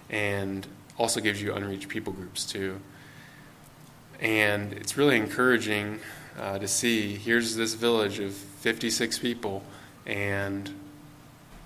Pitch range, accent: 100-120 Hz, American